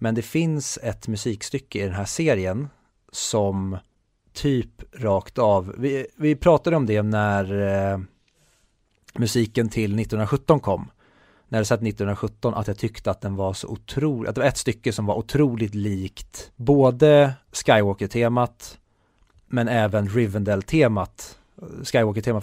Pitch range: 100-125 Hz